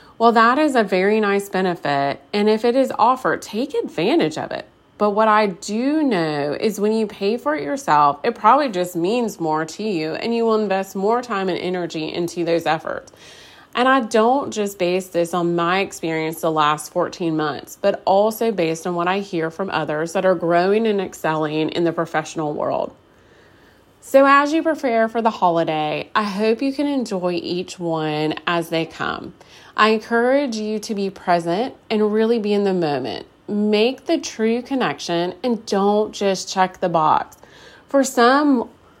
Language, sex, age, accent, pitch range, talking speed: English, female, 30-49, American, 170-230 Hz, 180 wpm